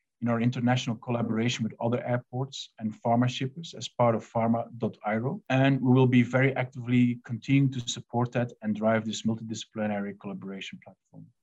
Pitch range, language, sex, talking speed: 115-130 Hz, English, male, 160 wpm